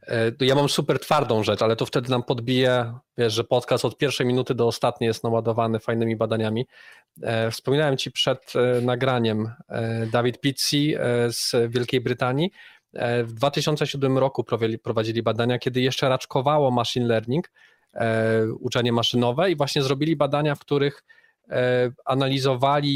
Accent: native